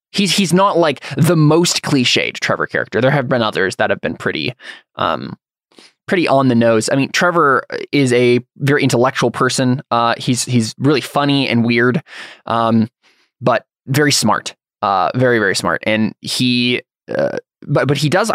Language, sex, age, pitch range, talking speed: English, male, 20-39, 115-145 Hz, 170 wpm